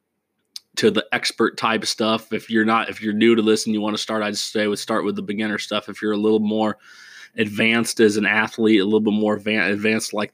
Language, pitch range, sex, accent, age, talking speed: English, 105-115 Hz, male, American, 20-39, 250 wpm